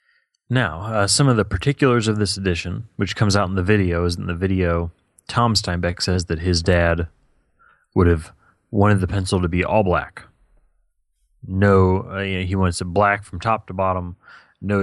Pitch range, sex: 90-100 Hz, male